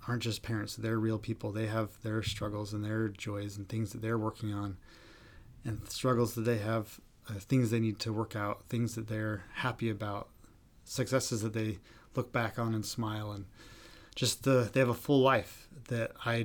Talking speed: 195 wpm